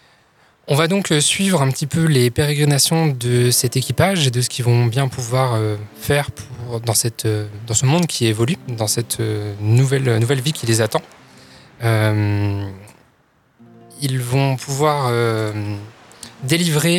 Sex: male